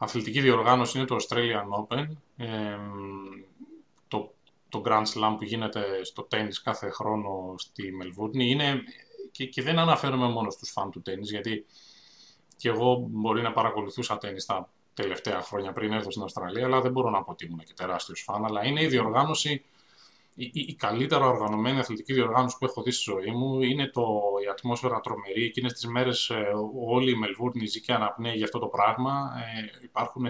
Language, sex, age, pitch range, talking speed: Greek, male, 20-39, 110-130 Hz, 175 wpm